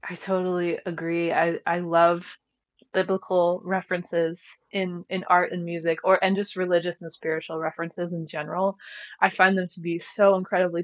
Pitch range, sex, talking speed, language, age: 165-185 Hz, female, 160 wpm, English, 20-39